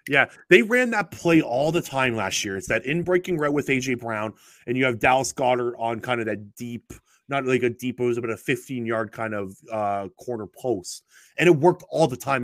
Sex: male